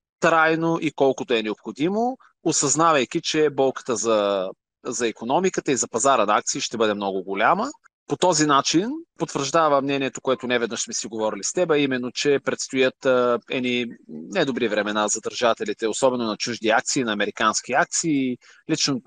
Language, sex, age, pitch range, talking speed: Bulgarian, male, 30-49, 125-155 Hz, 155 wpm